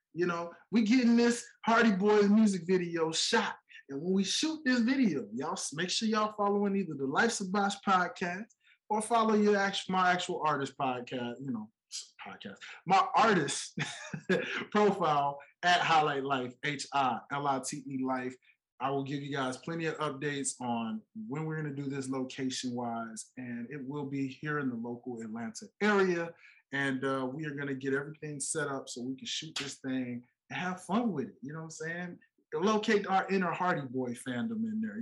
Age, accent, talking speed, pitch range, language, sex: 20-39, American, 180 wpm, 135-195 Hz, English, male